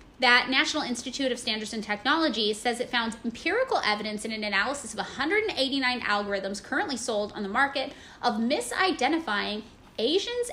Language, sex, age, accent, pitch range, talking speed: English, female, 10-29, American, 220-295 Hz, 150 wpm